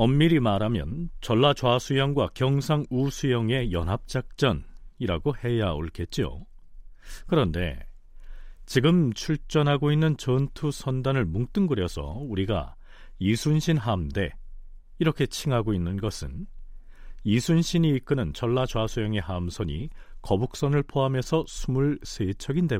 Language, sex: Korean, male